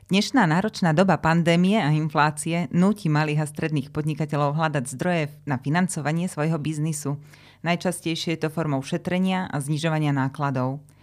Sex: female